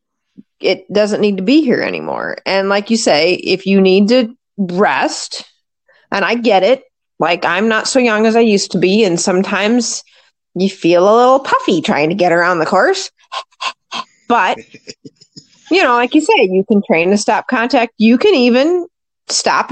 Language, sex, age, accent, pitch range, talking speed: English, female, 30-49, American, 195-245 Hz, 180 wpm